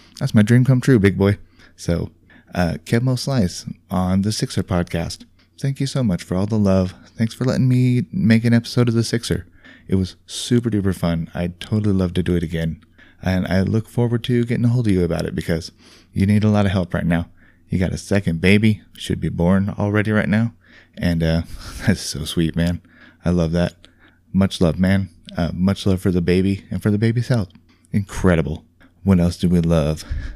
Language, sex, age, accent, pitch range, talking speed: English, male, 20-39, American, 85-115 Hz, 210 wpm